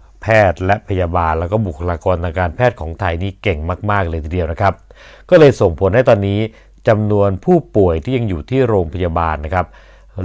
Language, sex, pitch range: Thai, male, 90-115 Hz